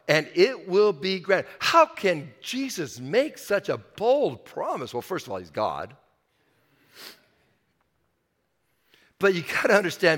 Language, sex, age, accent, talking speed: English, male, 50-69, American, 140 wpm